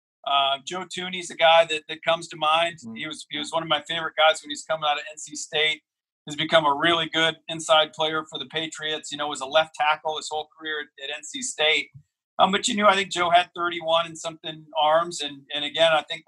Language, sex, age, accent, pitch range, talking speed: English, male, 40-59, American, 145-160 Hz, 245 wpm